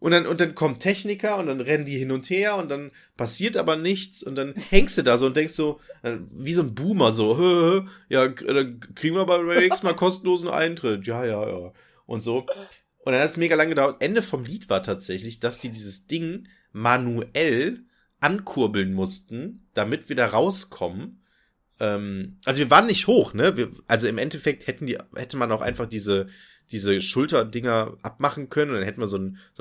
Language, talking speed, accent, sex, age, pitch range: German, 200 wpm, German, male, 30-49, 100-165 Hz